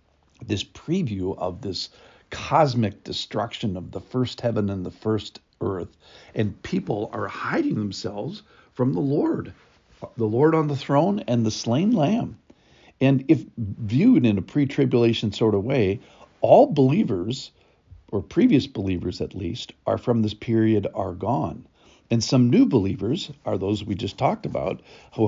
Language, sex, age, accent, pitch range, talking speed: English, male, 50-69, American, 105-140 Hz, 150 wpm